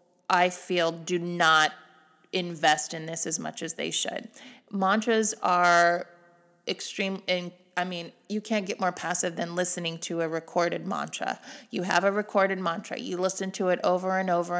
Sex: female